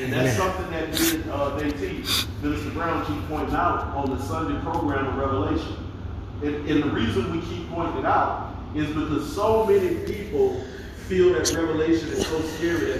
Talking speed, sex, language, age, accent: 185 wpm, male, English, 40-59, American